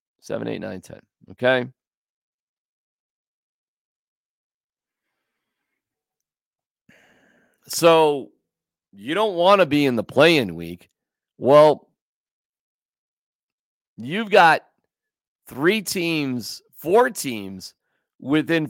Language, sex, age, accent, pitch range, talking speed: English, male, 40-59, American, 115-165 Hz, 65 wpm